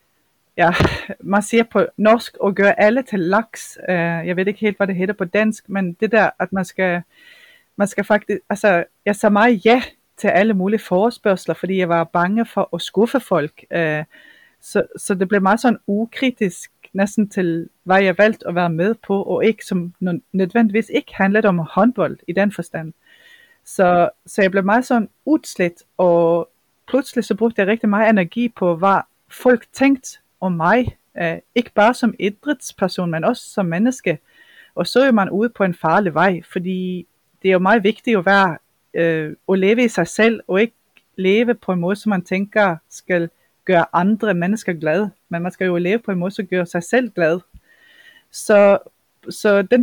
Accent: native